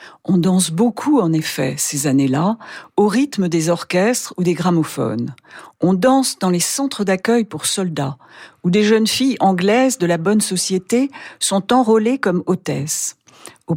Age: 50-69